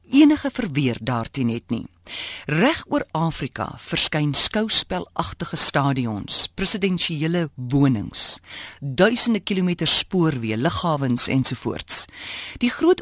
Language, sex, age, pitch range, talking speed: Dutch, female, 50-69, 125-205 Hz, 90 wpm